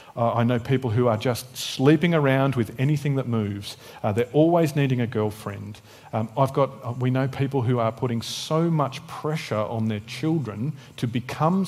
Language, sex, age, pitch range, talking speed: English, male, 40-59, 110-145 Hz, 180 wpm